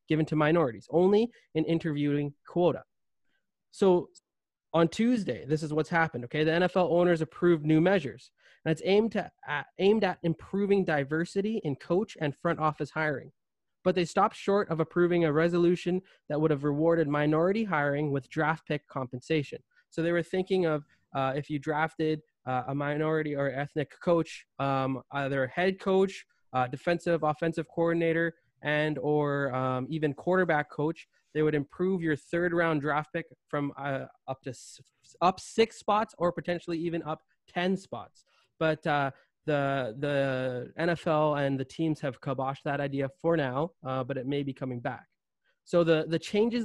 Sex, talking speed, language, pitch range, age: male, 170 wpm, English, 145-175 Hz, 20-39